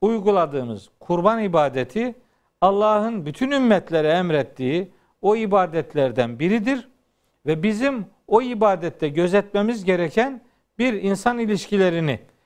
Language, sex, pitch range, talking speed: Turkish, male, 155-215 Hz, 90 wpm